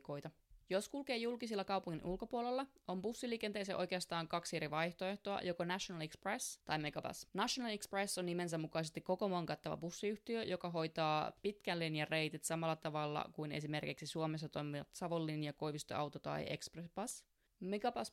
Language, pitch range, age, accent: Finnish, 155-185 Hz, 20-39, native